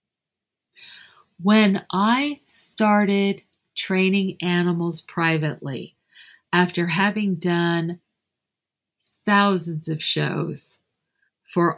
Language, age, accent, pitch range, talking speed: English, 50-69, American, 165-200 Hz, 65 wpm